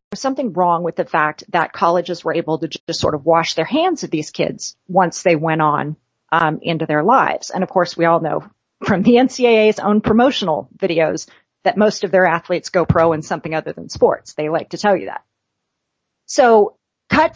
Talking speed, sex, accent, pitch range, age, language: 205 wpm, female, American, 165-230 Hz, 40-59, English